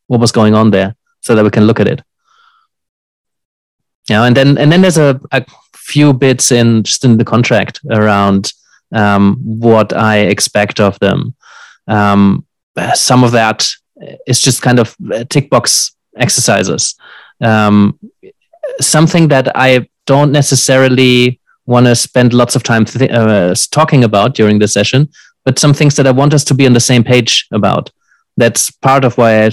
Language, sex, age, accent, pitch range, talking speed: English, male, 30-49, German, 105-130 Hz, 165 wpm